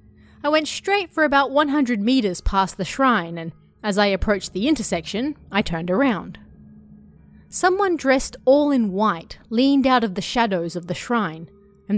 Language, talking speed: English, 165 wpm